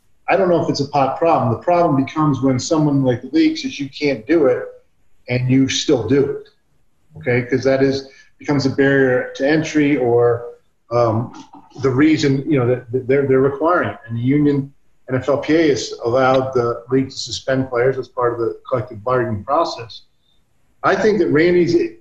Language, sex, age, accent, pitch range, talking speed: English, male, 40-59, American, 120-145 Hz, 185 wpm